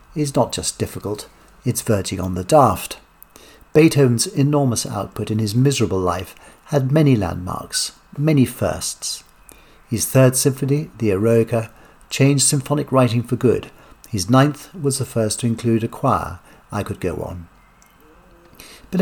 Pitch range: 105-140 Hz